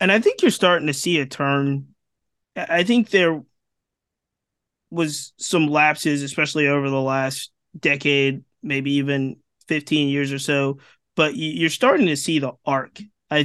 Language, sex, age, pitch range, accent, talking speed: English, male, 20-39, 135-160 Hz, American, 150 wpm